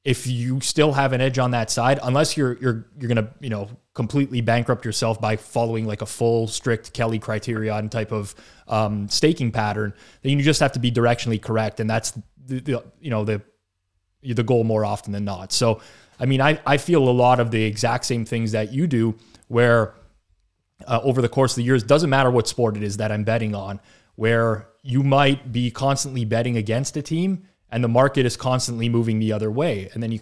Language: English